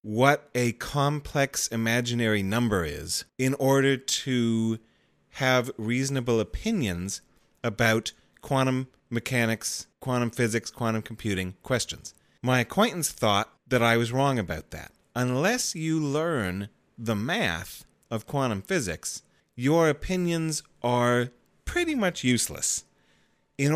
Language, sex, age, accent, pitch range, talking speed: English, male, 30-49, American, 115-145 Hz, 110 wpm